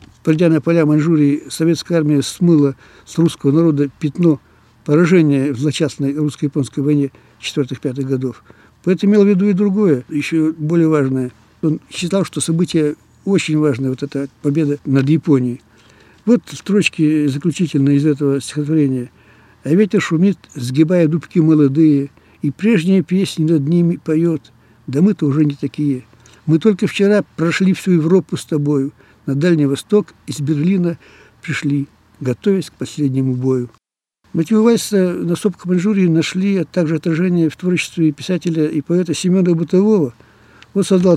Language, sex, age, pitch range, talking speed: Russian, male, 60-79, 140-180 Hz, 140 wpm